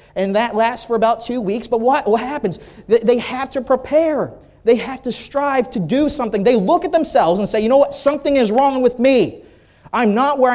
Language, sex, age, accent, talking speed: English, male, 30-49, American, 220 wpm